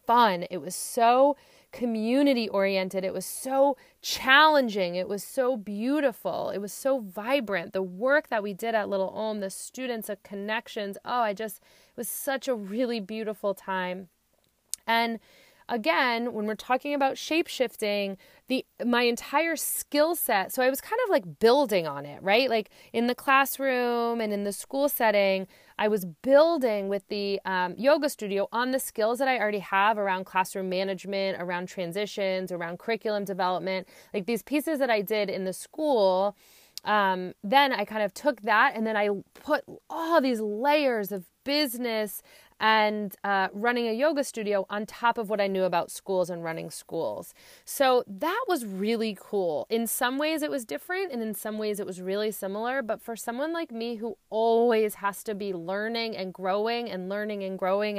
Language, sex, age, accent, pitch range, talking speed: English, female, 30-49, American, 195-255 Hz, 175 wpm